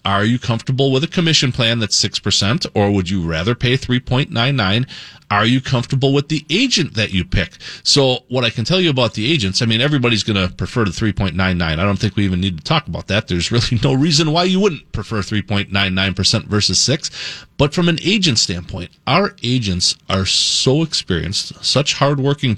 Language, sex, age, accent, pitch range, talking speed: English, male, 30-49, American, 100-135 Hz, 195 wpm